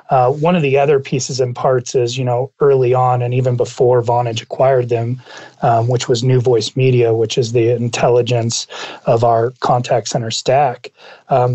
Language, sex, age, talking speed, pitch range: English, male, 30-49, 180 wpm, 120-135 Hz